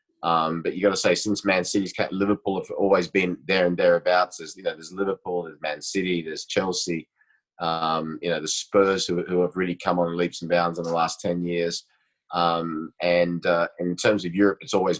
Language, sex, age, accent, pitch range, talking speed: English, male, 30-49, Australian, 85-100 Hz, 225 wpm